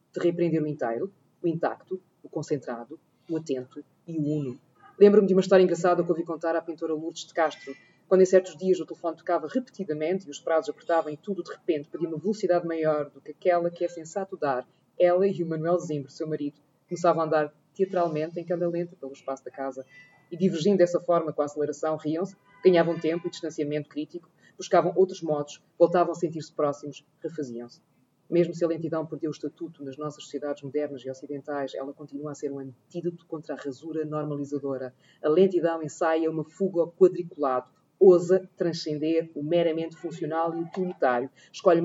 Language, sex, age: Portuguese, female, 20-39